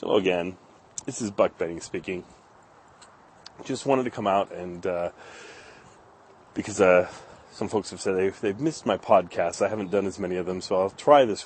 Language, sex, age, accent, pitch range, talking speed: English, male, 30-49, American, 90-110 Hz, 190 wpm